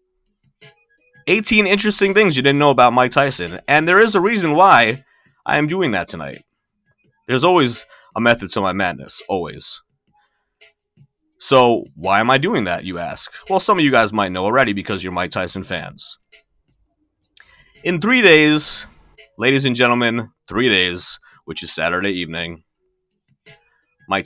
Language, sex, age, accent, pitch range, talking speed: English, male, 30-49, American, 95-140 Hz, 155 wpm